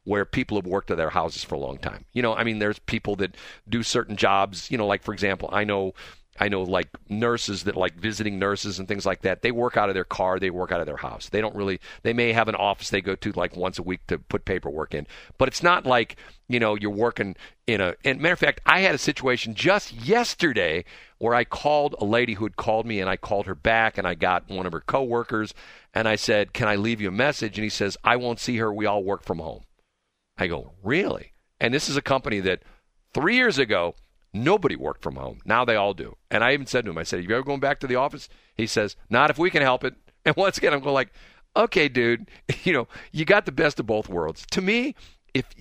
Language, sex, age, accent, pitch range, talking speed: English, male, 50-69, American, 100-125 Hz, 260 wpm